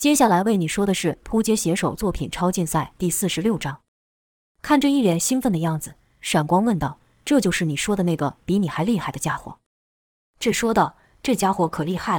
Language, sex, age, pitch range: Chinese, female, 20-39, 155-215 Hz